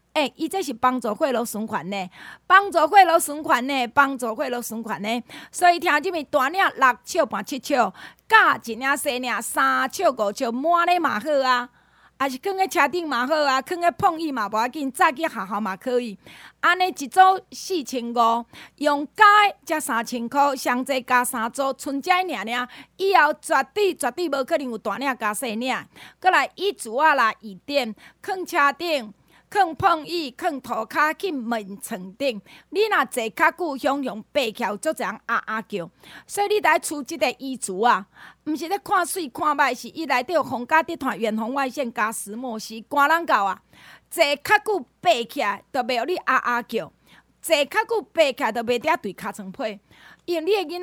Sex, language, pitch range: female, Chinese, 235-330 Hz